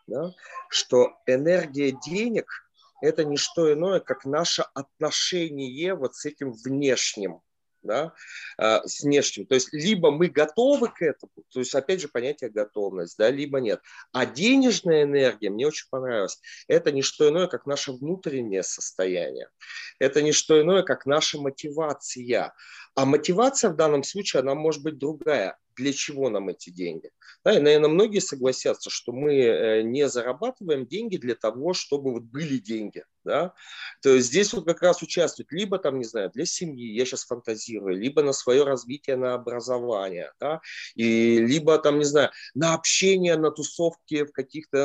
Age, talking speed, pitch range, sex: 30-49, 150 wpm, 135-200 Hz, male